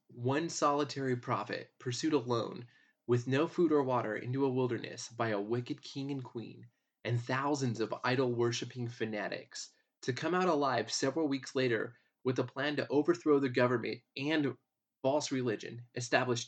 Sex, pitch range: male, 120-135 Hz